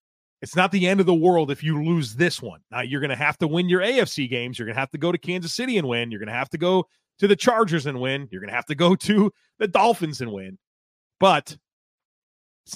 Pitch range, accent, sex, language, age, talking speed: 125-165 Hz, American, male, English, 30-49, 270 wpm